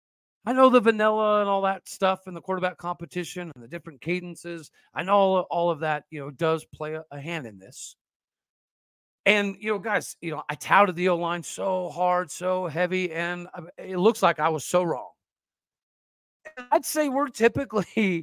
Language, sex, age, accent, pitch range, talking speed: English, male, 40-59, American, 170-205 Hz, 190 wpm